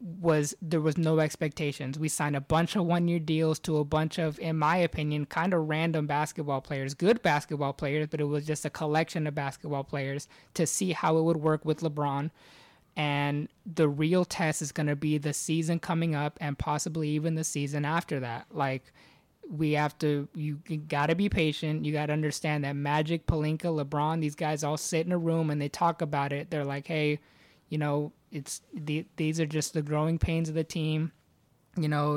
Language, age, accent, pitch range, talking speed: English, 20-39, American, 145-160 Hz, 205 wpm